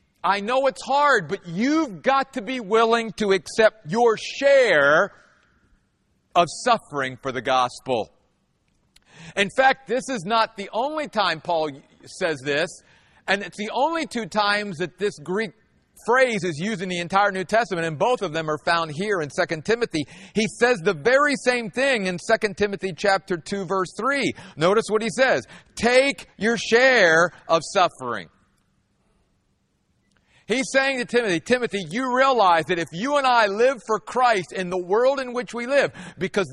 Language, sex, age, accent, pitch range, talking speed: English, male, 50-69, American, 180-260 Hz, 170 wpm